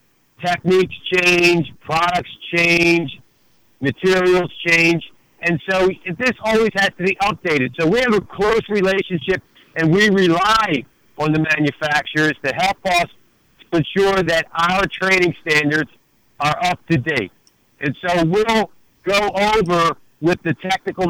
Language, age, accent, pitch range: English, 60-79, American, 155-190 Hz